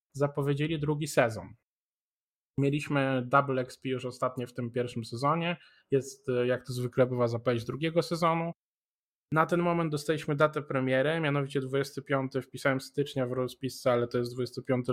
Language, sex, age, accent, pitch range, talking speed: Polish, male, 20-39, native, 125-145 Hz, 145 wpm